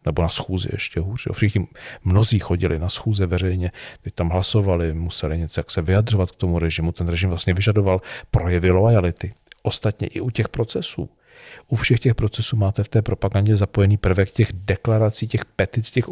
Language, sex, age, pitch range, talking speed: Czech, male, 40-59, 95-115 Hz, 180 wpm